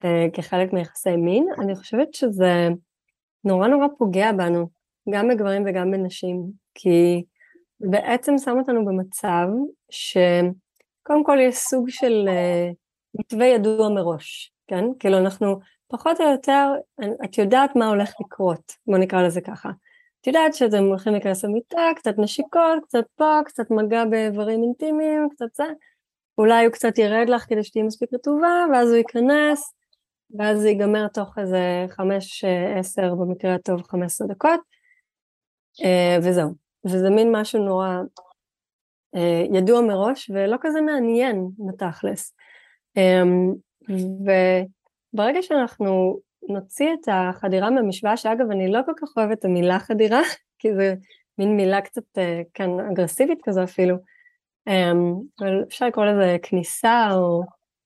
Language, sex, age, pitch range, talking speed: Hebrew, female, 30-49, 185-250 Hz, 125 wpm